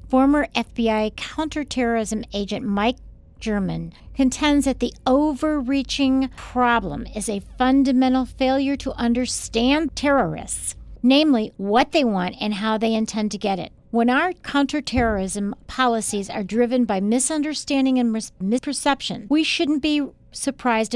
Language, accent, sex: English, American, female